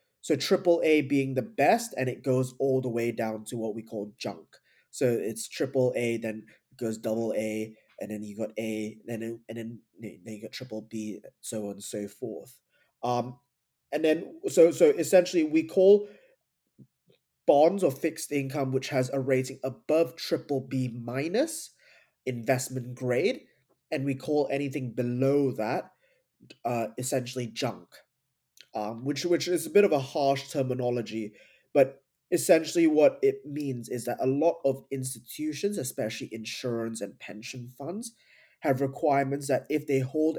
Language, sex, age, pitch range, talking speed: English, male, 20-39, 120-145 Hz, 160 wpm